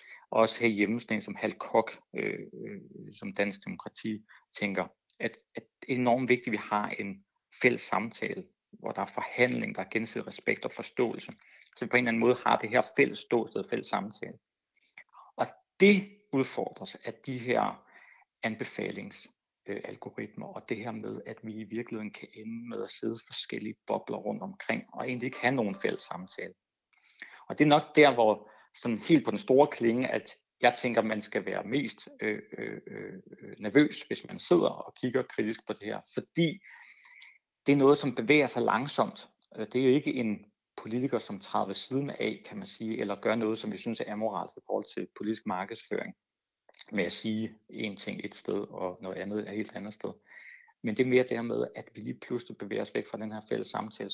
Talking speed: 200 wpm